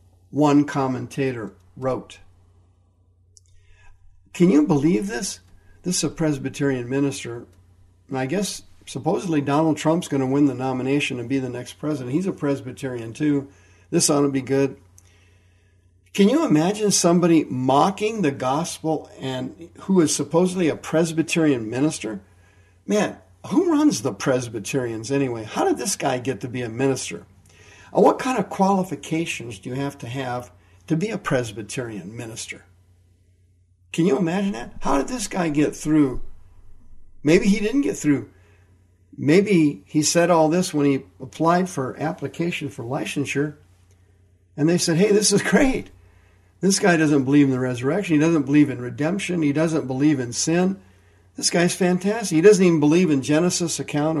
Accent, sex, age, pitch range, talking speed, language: American, male, 50-69, 95-160 Hz, 155 wpm, English